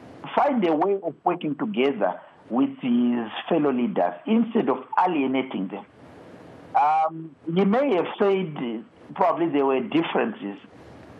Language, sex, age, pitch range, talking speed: English, male, 60-79, 155-250 Hz, 125 wpm